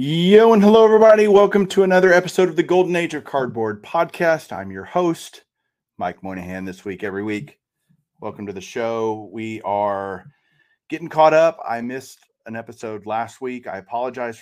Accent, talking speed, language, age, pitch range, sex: American, 170 wpm, English, 30-49, 100-125 Hz, male